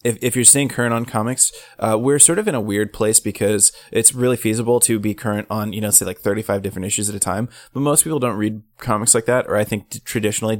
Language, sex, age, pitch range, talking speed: English, male, 20-39, 105-115 Hz, 255 wpm